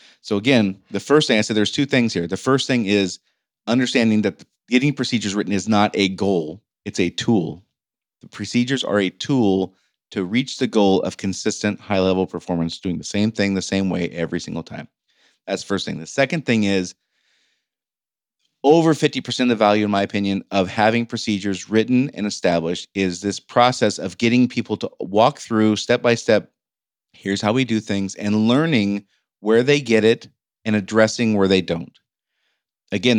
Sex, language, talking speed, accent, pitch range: male, English, 180 wpm, American, 100-145 Hz